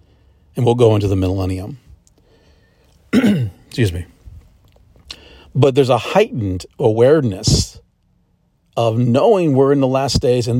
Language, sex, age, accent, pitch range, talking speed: English, male, 40-59, American, 95-145 Hz, 120 wpm